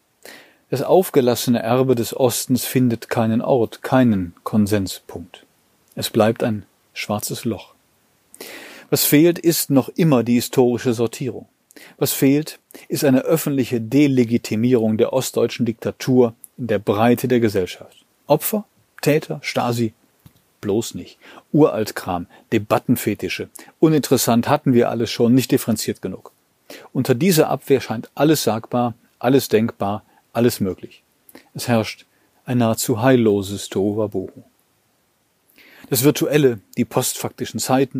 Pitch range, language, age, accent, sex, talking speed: 115-135 Hz, German, 40-59, German, male, 115 wpm